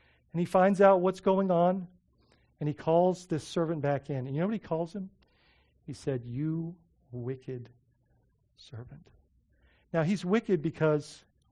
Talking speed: 155 wpm